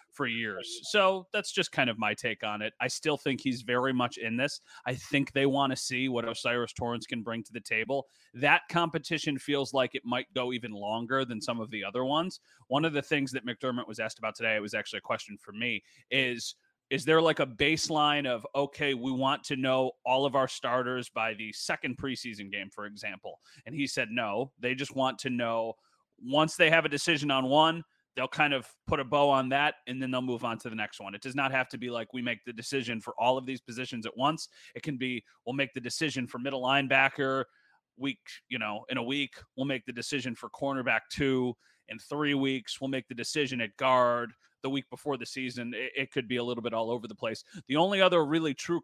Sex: male